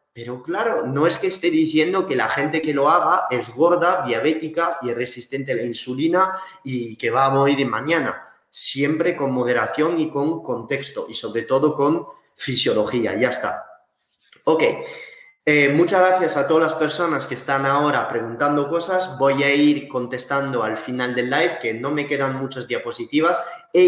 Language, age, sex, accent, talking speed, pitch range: Spanish, 20-39, male, Spanish, 170 wpm, 125-165 Hz